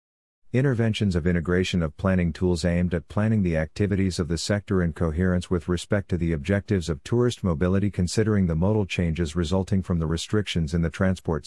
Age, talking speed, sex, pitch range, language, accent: 50-69, 185 wpm, male, 85-105 Hz, English, American